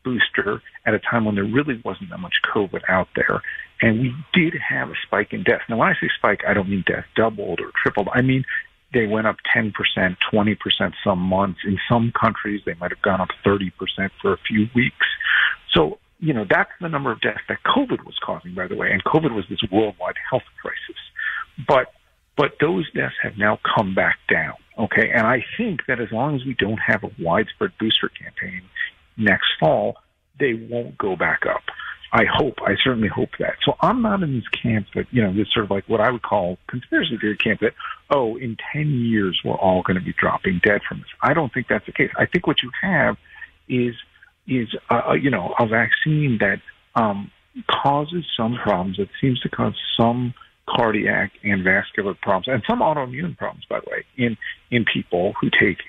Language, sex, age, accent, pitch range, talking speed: English, male, 50-69, American, 105-150 Hz, 210 wpm